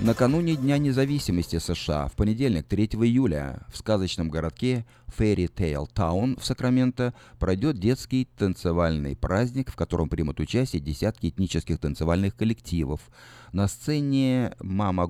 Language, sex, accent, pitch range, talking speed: Russian, male, native, 80-120 Hz, 120 wpm